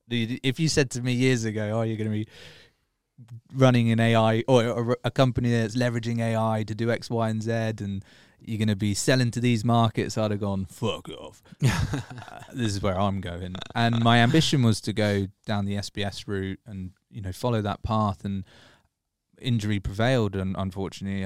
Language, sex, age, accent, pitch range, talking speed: English, male, 20-39, British, 100-120 Hz, 195 wpm